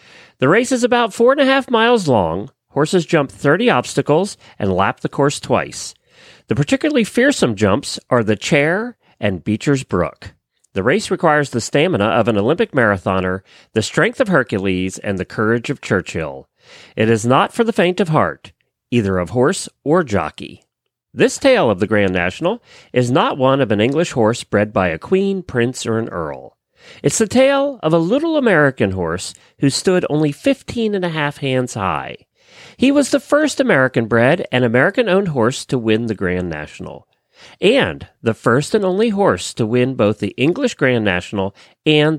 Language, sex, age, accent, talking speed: English, male, 40-59, American, 180 wpm